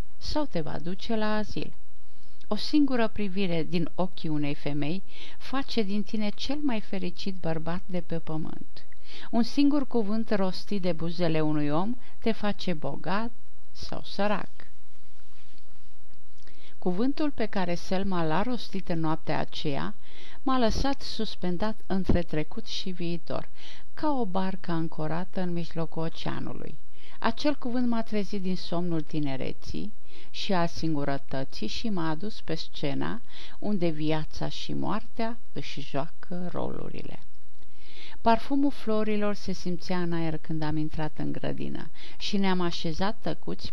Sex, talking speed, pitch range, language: female, 130 wpm, 155-215 Hz, Romanian